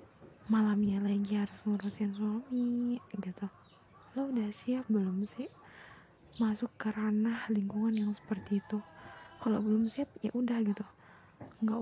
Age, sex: 20-39, female